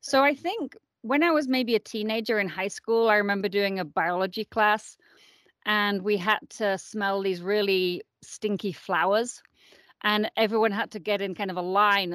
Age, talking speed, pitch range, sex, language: 30-49, 185 wpm, 180-225 Hz, female, English